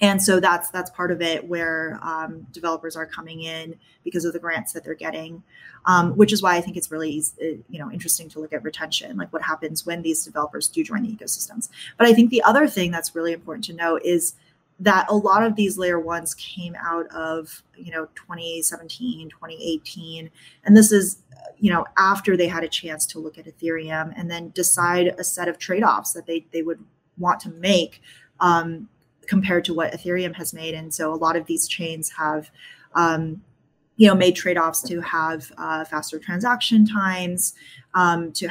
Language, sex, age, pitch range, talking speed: English, female, 20-39, 160-190 Hz, 205 wpm